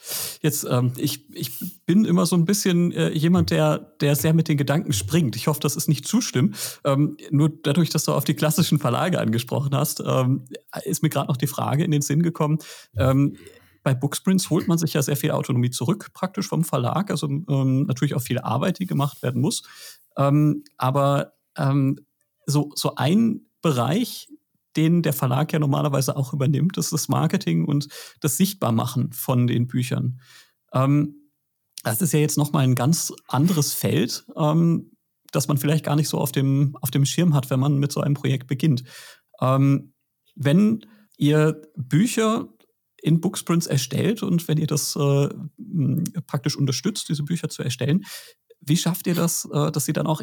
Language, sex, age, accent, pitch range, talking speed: German, male, 40-59, German, 140-170 Hz, 170 wpm